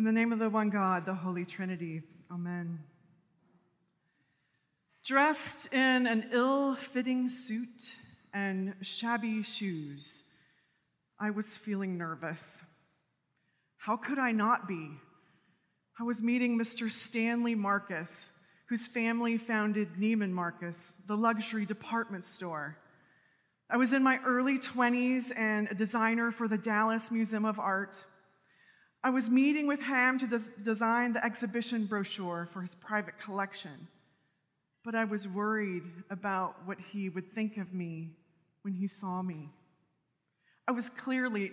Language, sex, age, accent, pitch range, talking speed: English, female, 30-49, American, 180-240 Hz, 130 wpm